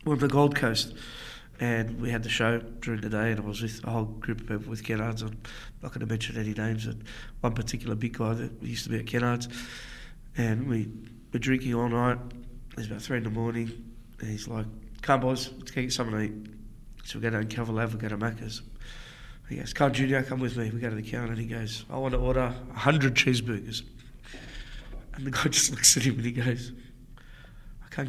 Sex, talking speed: male, 235 wpm